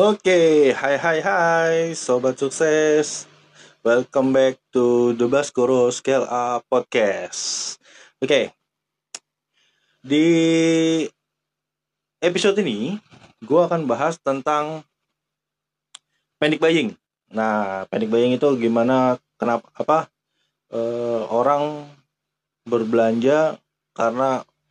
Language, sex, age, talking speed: Indonesian, male, 20-39, 90 wpm